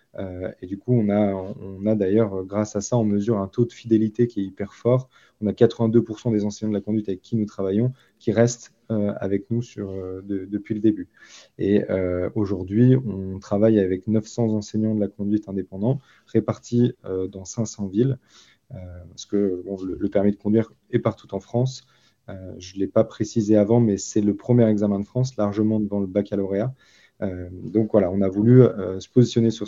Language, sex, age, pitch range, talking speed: French, male, 20-39, 100-115 Hz, 210 wpm